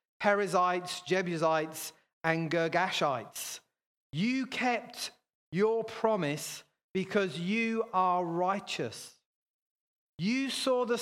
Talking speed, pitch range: 80 wpm, 175-230 Hz